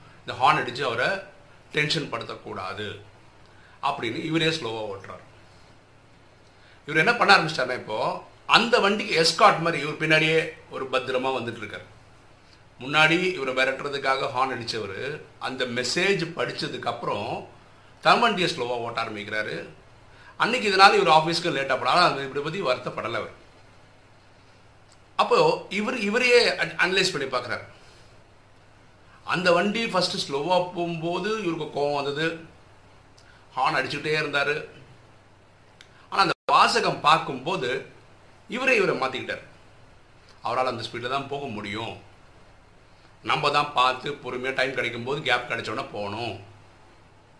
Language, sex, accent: Tamil, male, native